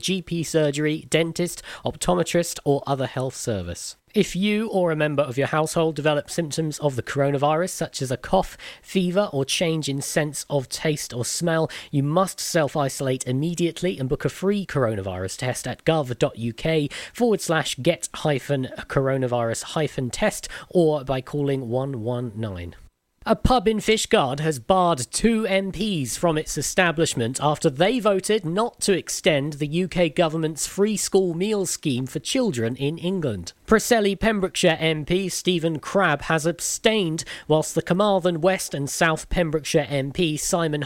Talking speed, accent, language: 150 wpm, British, English